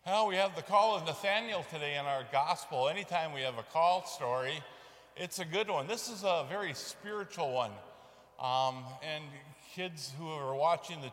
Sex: male